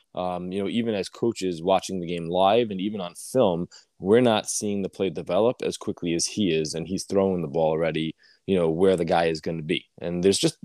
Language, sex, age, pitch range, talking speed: English, male, 20-39, 80-95 Hz, 240 wpm